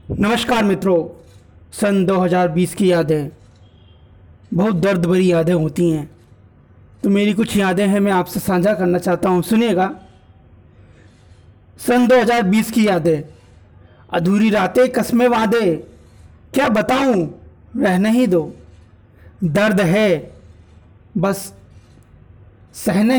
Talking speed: 105 wpm